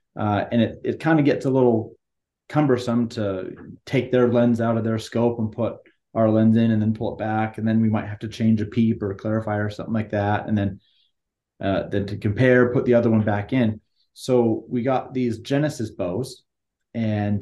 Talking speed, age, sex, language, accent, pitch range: 215 wpm, 30-49, male, English, American, 105-125 Hz